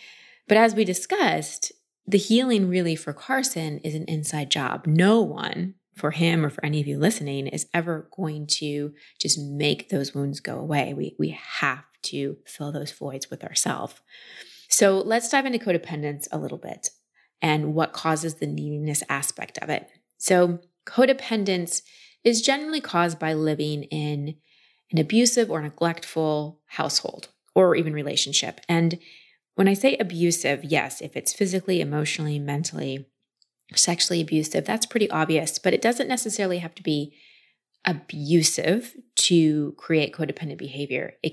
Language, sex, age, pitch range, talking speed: English, female, 20-39, 150-190 Hz, 150 wpm